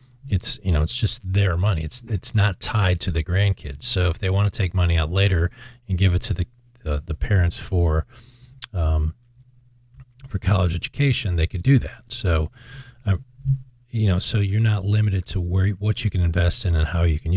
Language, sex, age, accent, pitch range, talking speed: English, male, 40-59, American, 90-120 Hz, 205 wpm